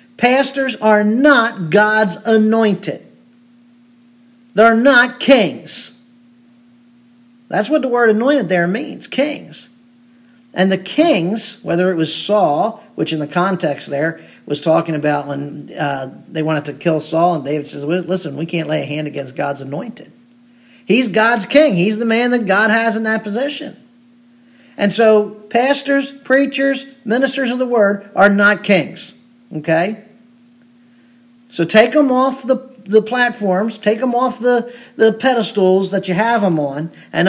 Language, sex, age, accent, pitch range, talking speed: English, male, 50-69, American, 190-240 Hz, 150 wpm